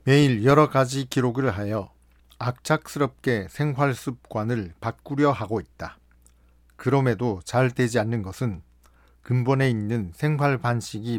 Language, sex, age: Korean, male, 50-69